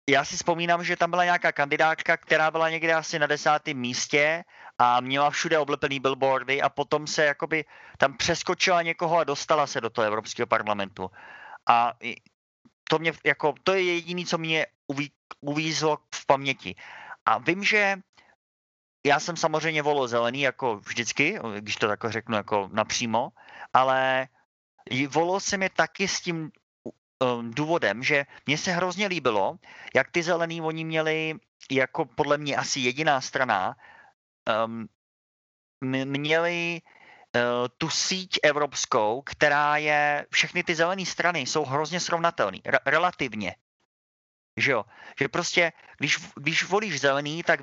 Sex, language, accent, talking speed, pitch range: male, Czech, native, 140 wpm, 130-170 Hz